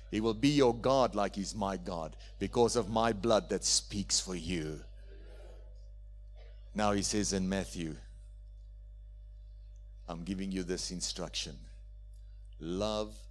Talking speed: 125 wpm